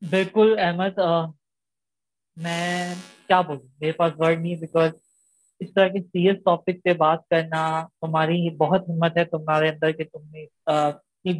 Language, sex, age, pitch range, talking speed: Urdu, female, 20-39, 160-185 Hz, 140 wpm